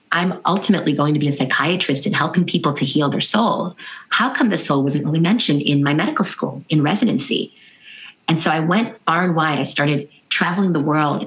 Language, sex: English, female